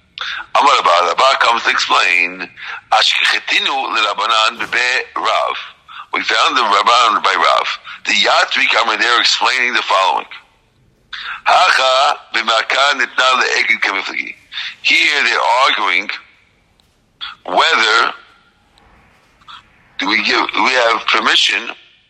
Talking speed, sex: 85 wpm, male